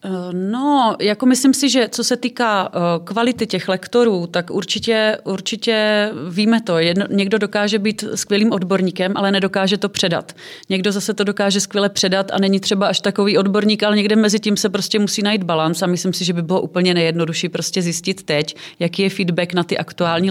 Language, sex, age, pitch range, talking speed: Czech, female, 30-49, 175-200 Hz, 190 wpm